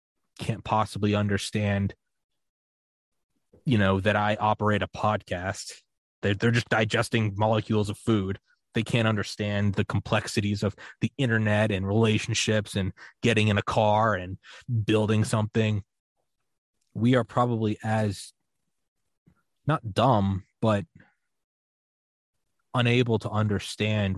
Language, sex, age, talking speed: English, male, 20-39, 110 wpm